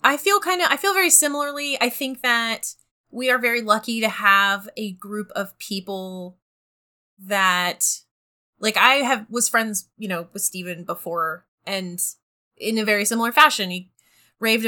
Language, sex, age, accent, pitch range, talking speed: English, female, 20-39, American, 185-235 Hz, 165 wpm